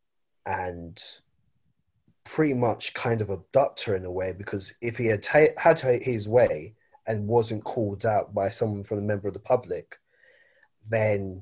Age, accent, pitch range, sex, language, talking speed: 20-39, British, 105-125 Hz, male, English, 150 wpm